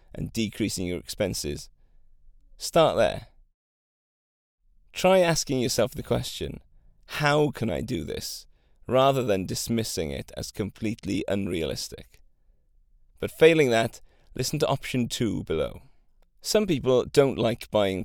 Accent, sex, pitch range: British, male, 105-135 Hz